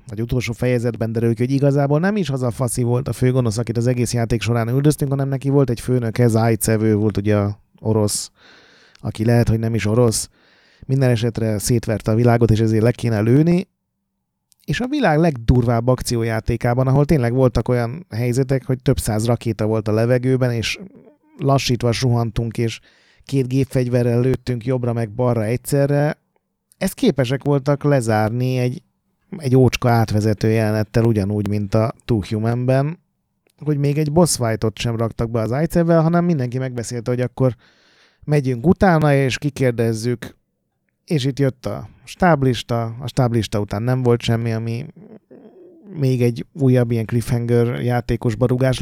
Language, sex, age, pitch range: Hungarian, male, 30-49, 115-135 Hz